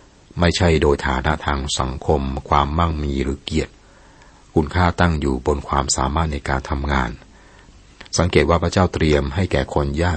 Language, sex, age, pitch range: Thai, male, 60-79, 70-85 Hz